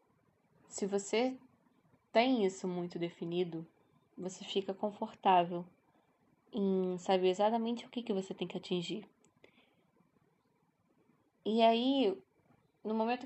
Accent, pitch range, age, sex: Brazilian, 175-205 Hz, 10-29, female